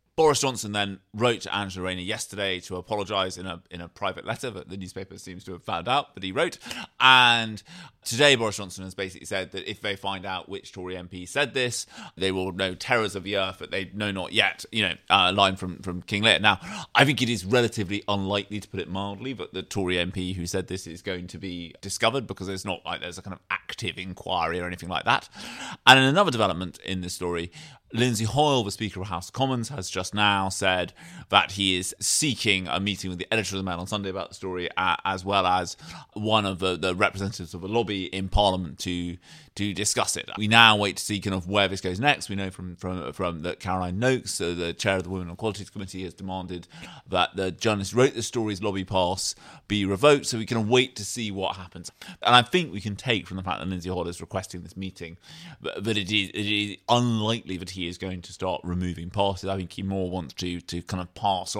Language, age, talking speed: English, 30-49, 240 wpm